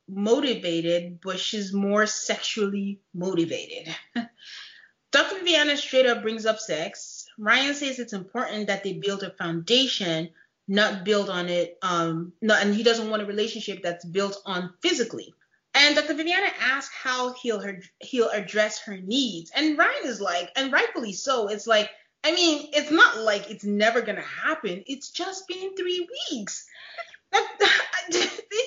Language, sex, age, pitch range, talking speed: English, female, 30-49, 200-290 Hz, 155 wpm